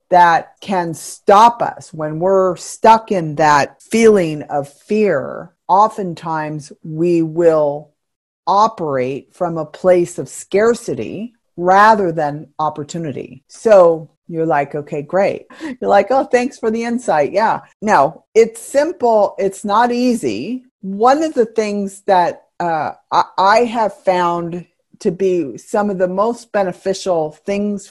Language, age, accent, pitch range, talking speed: English, 50-69, American, 170-220 Hz, 130 wpm